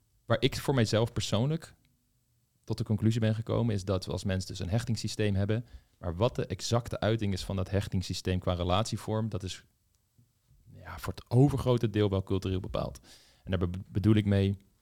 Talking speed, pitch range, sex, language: 180 wpm, 95-110 Hz, male, Dutch